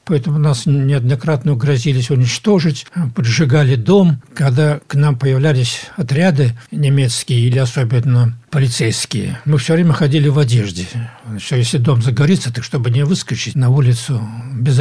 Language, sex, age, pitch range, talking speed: Russian, male, 60-79, 125-155 Hz, 135 wpm